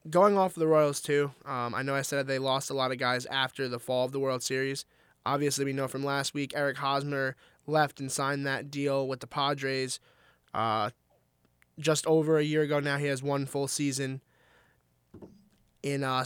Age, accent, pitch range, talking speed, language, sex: 20-39, American, 135-155 Hz, 205 wpm, English, male